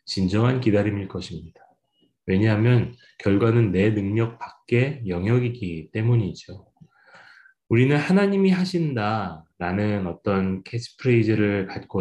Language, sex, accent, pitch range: Korean, male, native, 95-125 Hz